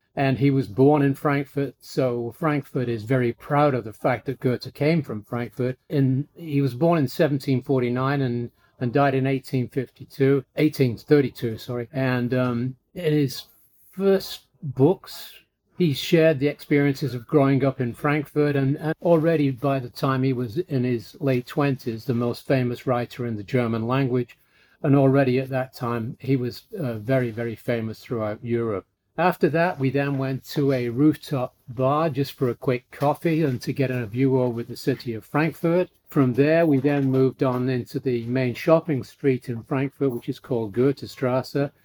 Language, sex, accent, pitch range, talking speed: English, male, British, 125-145 Hz, 175 wpm